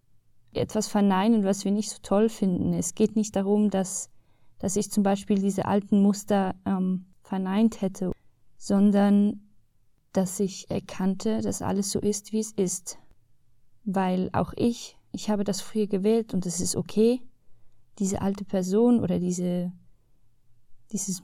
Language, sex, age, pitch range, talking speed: German, female, 20-39, 175-210 Hz, 145 wpm